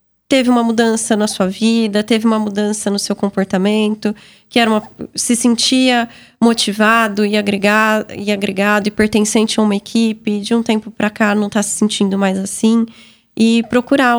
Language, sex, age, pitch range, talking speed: Portuguese, female, 20-39, 210-240 Hz, 170 wpm